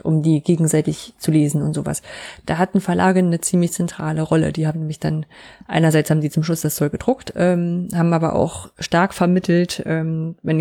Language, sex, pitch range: German, female, 155-195 Hz